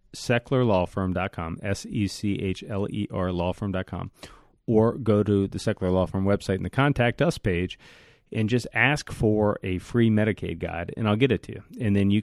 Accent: American